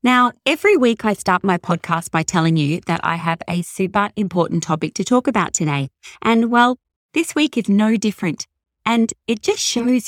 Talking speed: 190 wpm